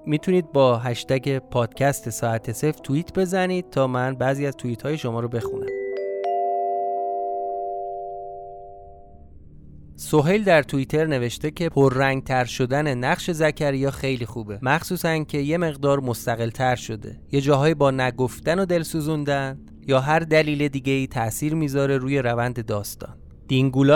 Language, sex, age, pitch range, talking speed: Persian, male, 30-49, 120-155 Hz, 135 wpm